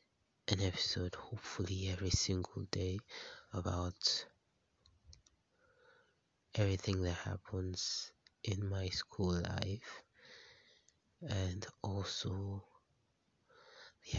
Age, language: 20-39, English